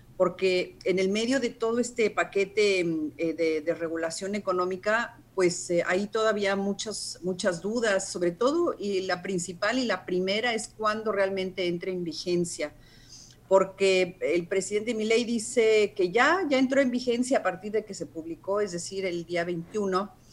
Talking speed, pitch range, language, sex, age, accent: 165 wpm, 175-215 Hz, Spanish, female, 40-59, Mexican